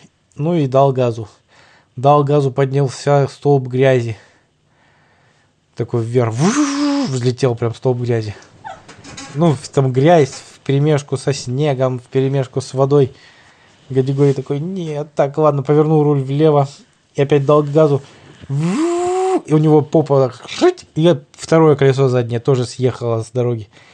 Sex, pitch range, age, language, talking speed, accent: male, 125-155 Hz, 20-39, Russian, 130 wpm, native